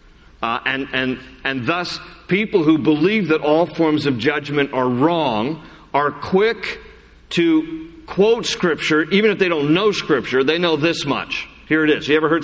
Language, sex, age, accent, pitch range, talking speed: English, male, 50-69, American, 130-175 Hz, 175 wpm